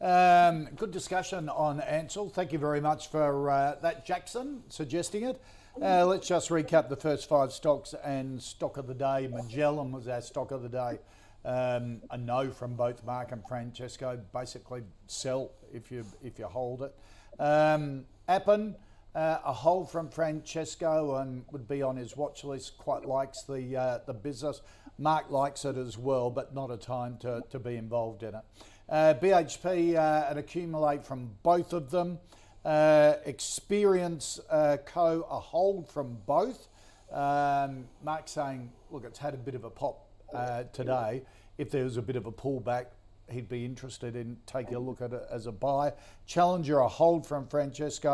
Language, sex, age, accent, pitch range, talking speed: English, male, 50-69, Australian, 120-155 Hz, 175 wpm